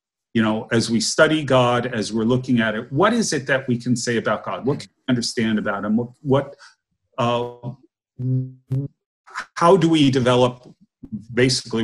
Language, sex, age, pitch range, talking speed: English, male, 40-59, 115-135 Hz, 165 wpm